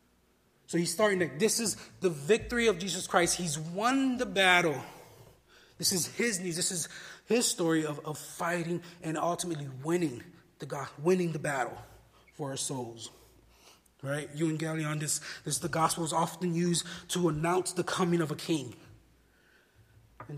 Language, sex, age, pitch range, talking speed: English, male, 30-49, 140-180 Hz, 160 wpm